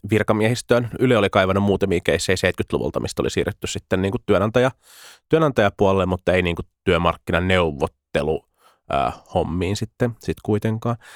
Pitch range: 90-115 Hz